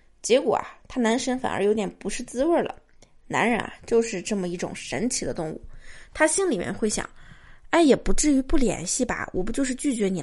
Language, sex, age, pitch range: Chinese, female, 20-39, 205-270 Hz